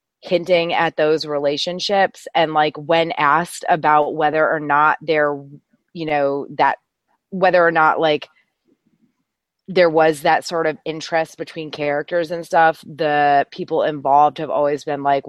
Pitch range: 145-170 Hz